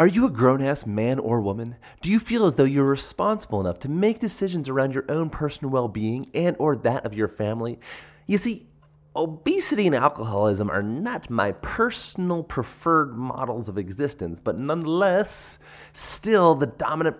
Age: 30-49